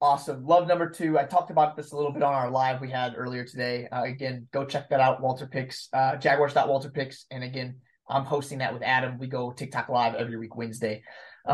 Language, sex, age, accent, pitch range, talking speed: English, male, 20-39, American, 130-155 Hz, 225 wpm